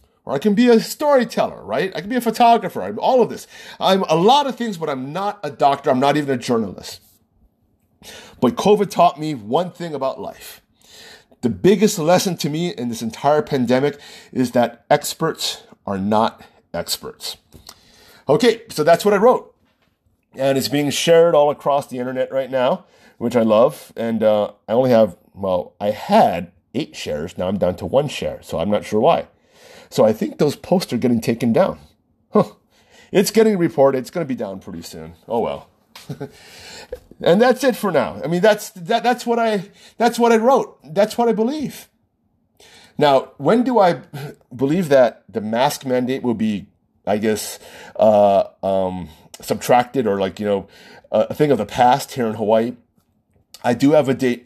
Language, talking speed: English, 185 wpm